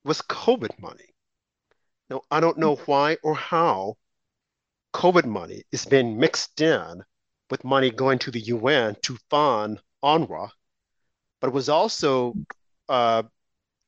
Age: 40-59